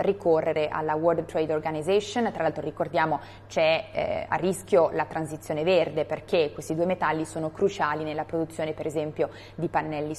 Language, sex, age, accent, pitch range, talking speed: Italian, female, 20-39, native, 155-190 Hz, 160 wpm